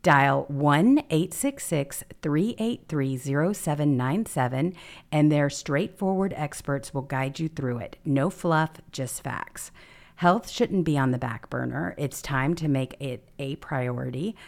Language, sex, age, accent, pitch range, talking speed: English, female, 50-69, American, 135-175 Hz, 120 wpm